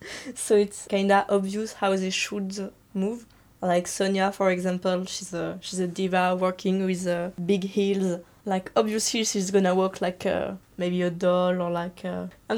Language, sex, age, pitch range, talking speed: English, female, 20-39, 180-205 Hz, 165 wpm